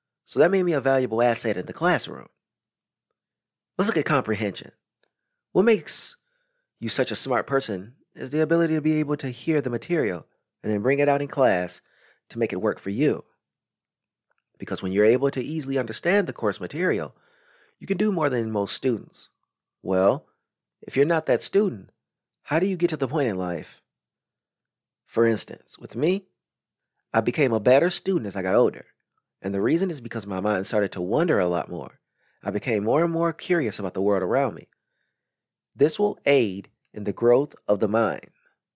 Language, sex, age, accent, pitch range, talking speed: English, male, 30-49, American, 105-155 Hz, 190 wpm